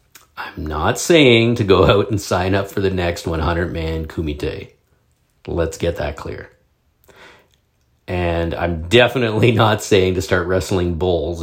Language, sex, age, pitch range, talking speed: English, male, 50-69, 75-100 Hz, 140 wpm